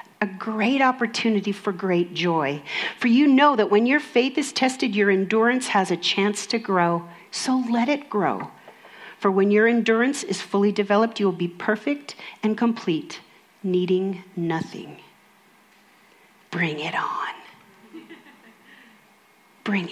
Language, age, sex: English, 40-59, female